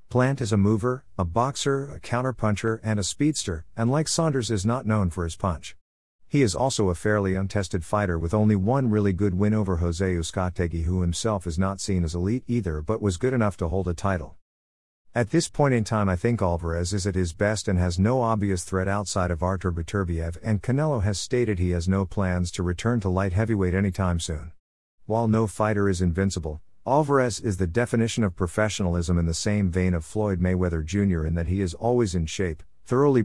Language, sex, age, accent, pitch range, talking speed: English, male, 50-69, American, 90-115 Hz, 210 wpm